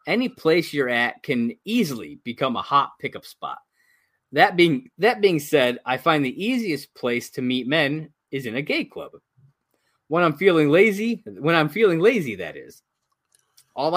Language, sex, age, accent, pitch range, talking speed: English, male, 20-39, American, 130-185 Hz, 170 wpm